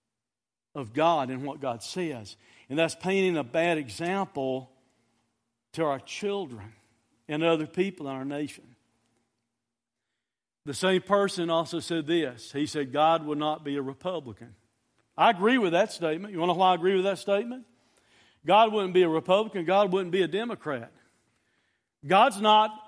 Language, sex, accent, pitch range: Japanese, male, American, 165-240 Hz